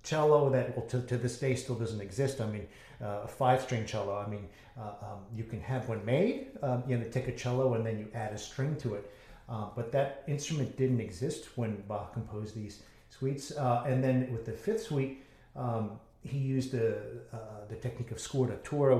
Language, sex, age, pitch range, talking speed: English, male, 50-69, 110-130 Hz, 210 wpm